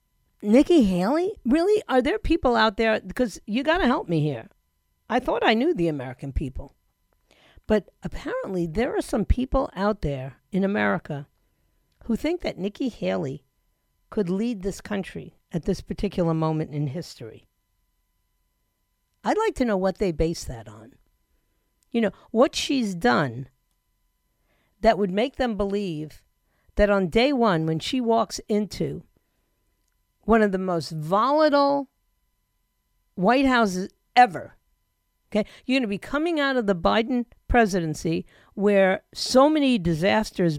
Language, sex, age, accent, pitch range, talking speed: English, female, 50-69, American, 170-240 Hz, 140 wpm